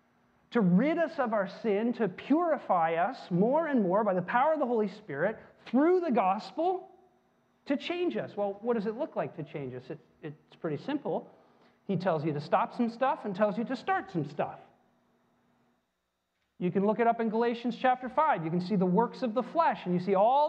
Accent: American